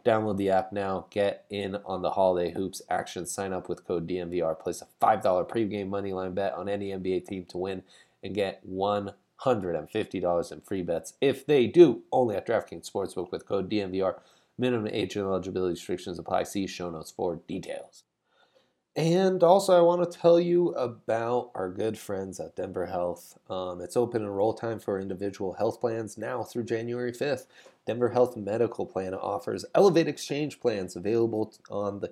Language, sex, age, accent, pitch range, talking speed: English, male, 30-49, American, 100-135 Hz, 175 wpm